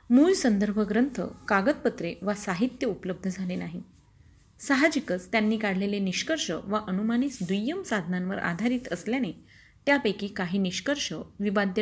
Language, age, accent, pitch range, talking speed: Marathi, 30-49, native, 190-245 Hz, 105 wpm